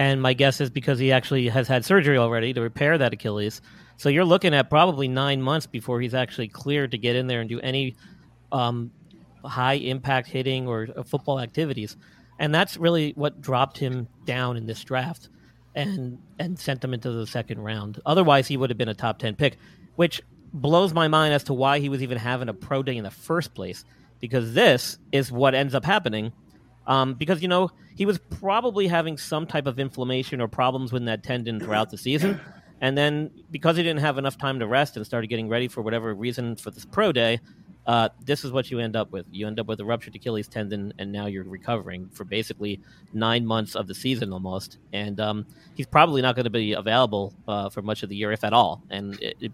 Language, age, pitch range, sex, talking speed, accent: English, 40-59, 110-140 Hz, male, 220 wpm, American